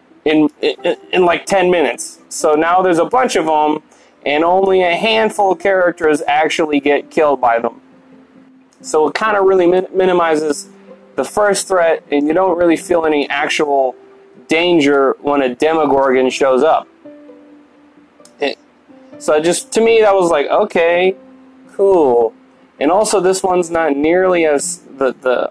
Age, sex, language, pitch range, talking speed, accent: 20-39, male, English, 150-230 Hz, 155 wpm, American